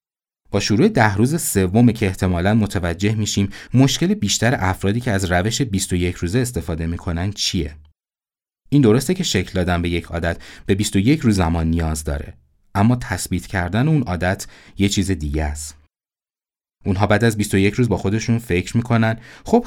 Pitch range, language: 85-110 Hz, Persian